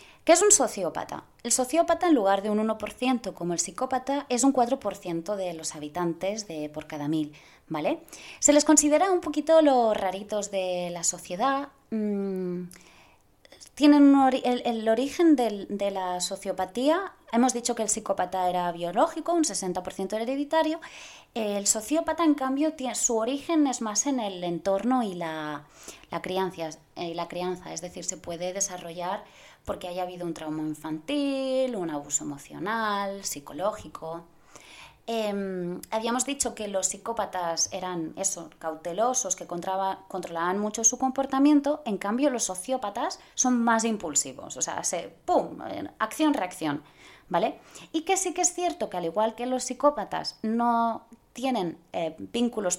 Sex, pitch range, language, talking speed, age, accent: female, 180-265 Hz, Spanish, 150 wpm, 20-39, Spanish